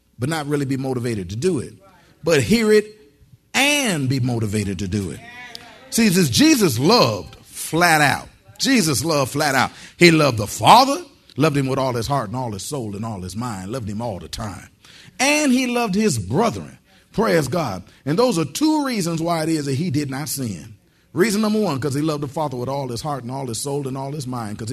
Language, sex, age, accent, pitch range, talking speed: English, male, 40-59, American, 125-170 Hz, 220 wpm